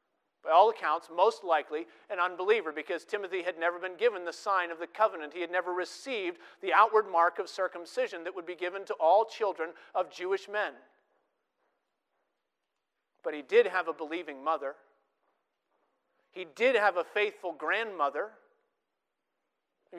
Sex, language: male, English